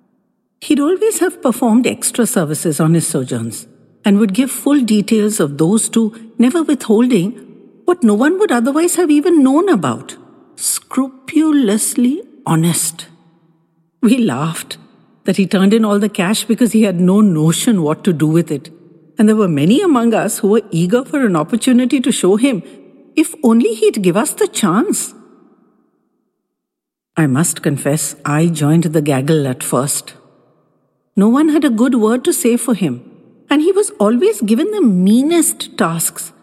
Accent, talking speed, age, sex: Indian, 160 wpm, 60-79, female